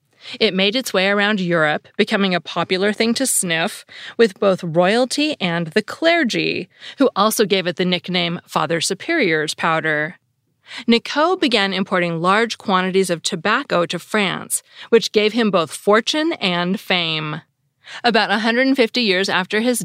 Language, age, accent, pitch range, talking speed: English, 30-49, American, 165-230 Hz, 145 wpm